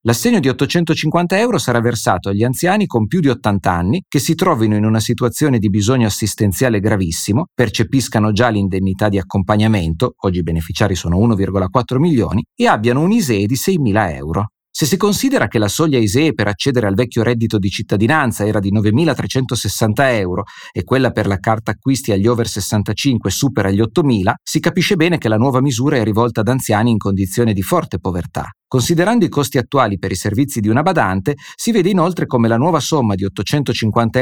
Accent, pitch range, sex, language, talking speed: native, 105-145 Hz, male, Italian, 185 wpm